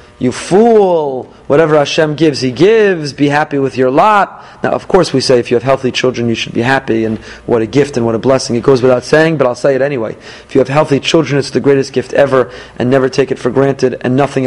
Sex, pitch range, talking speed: male, 130-170 Hz, 255 wpm